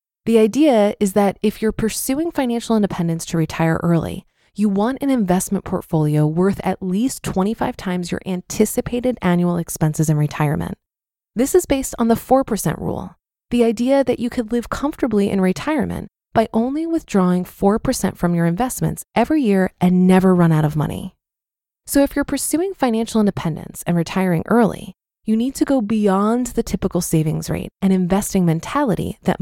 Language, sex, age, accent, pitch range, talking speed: English, female, 20-39, American, 175-245 Hz, 165 wpm